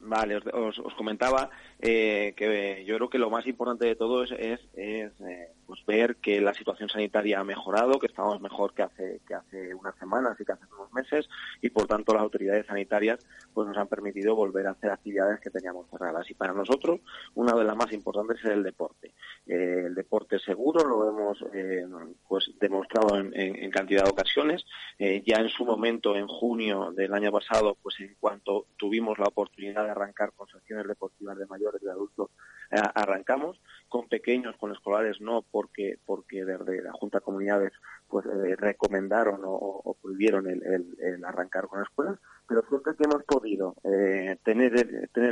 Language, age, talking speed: Spanish, 30-49, 185 wpm